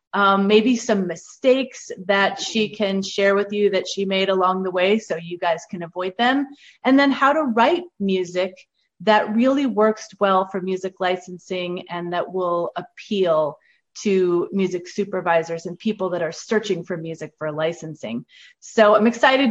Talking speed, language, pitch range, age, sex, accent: 165 wpm, English, 185-240 Hz, 30-49, female, American